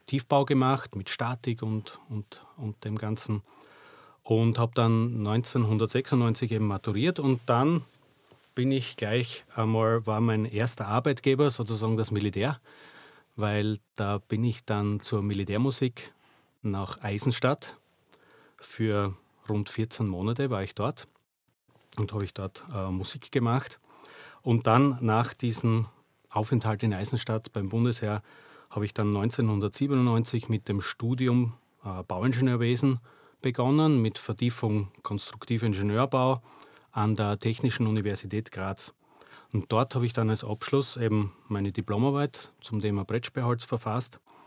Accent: Austrian